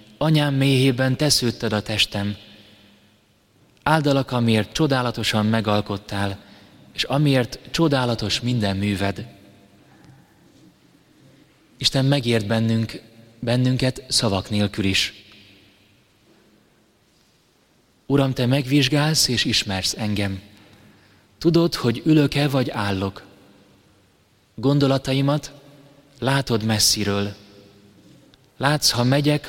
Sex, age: male, 30-49